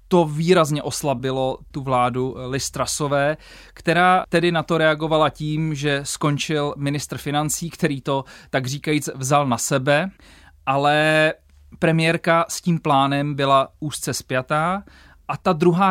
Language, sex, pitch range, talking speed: Czech, male, 140-160 Hz, 130 wpm